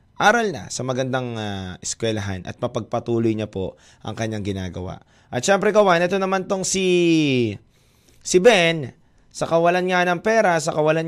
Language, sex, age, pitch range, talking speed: Filipino, male, 20-39, 110-150 Hz, 155 wpm